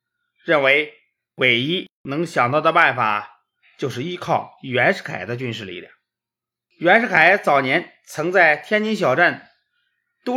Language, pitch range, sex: Chinese, 145-220 Hz, male